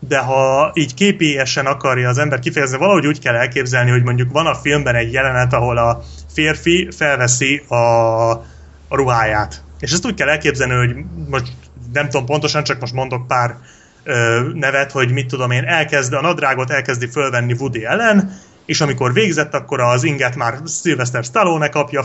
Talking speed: 170 wpm